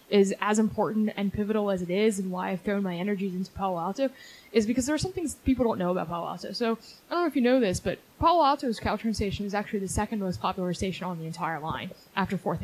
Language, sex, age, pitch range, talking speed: English, female, 10-29, 190-240 Hz, 260 wpm